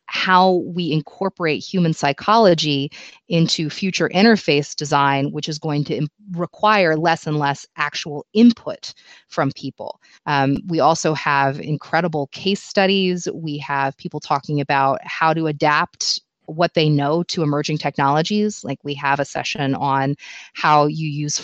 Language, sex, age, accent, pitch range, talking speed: English, female, 30-49, American, 140-170 Hz, 145 wpm